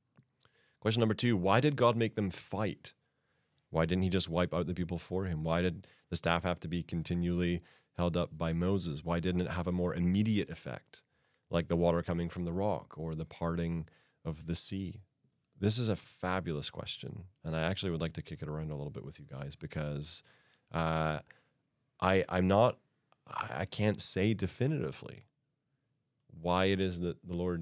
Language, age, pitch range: English, 30-49, 85-105 Hz